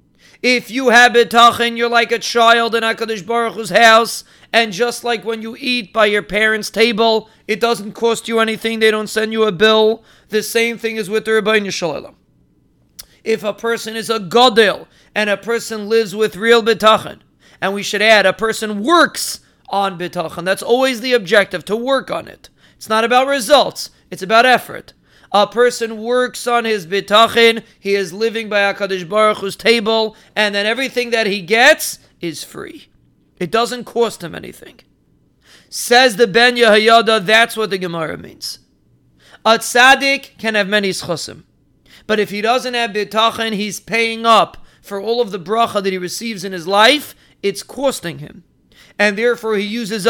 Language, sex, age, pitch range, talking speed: English, male, 40-59, 205-235 Hz, 175 wpm